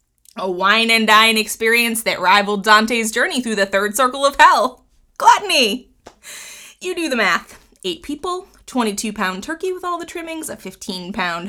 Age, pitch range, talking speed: 20-39, 220-330 Hz, 145 wpm